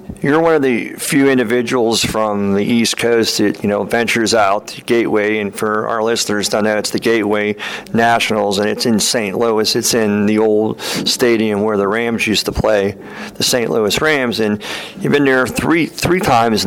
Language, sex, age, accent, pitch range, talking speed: English, male, 50-69, American, 105-120 Hz, 195 wpm